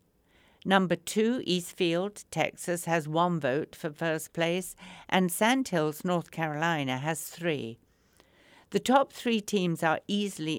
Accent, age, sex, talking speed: British, 60-79, female, 125 wpm